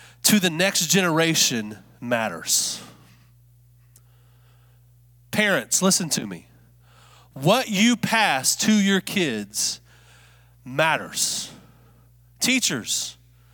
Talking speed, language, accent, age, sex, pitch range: 75 wpm, English, American, 30-49, male, 165-225 Hz